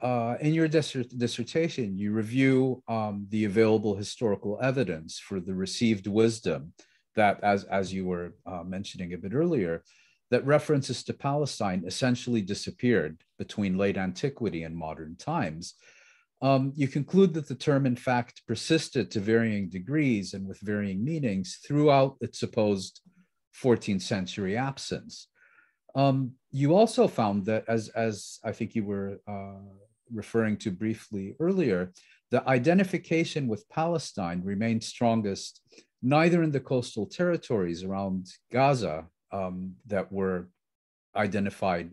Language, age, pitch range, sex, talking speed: English, 40-59, 95-130 Hz, male, 135 wpm